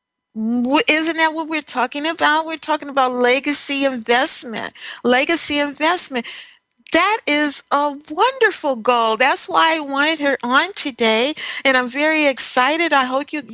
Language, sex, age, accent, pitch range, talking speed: English, female, 50-69, American, 210-275 Hz, 140 wpm